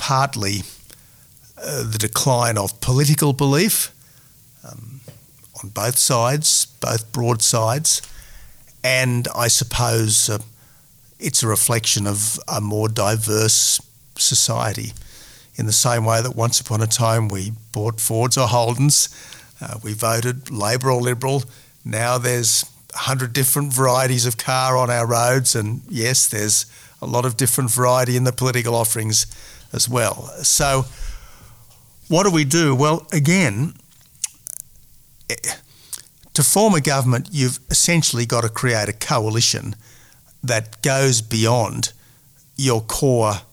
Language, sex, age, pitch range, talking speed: English, male, 50-69, 110-135 Hz, 130 wpm